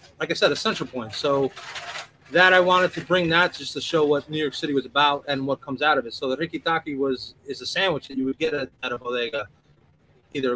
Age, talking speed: 30-49, 250 wpm